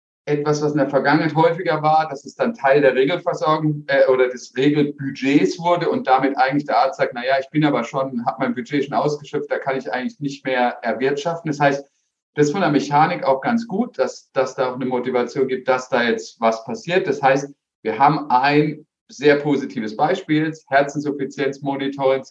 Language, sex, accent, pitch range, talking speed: German, male, German, 130-150 Hz, 195 wpm